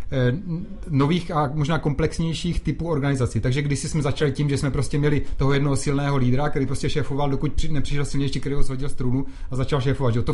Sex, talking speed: male, 190 wpm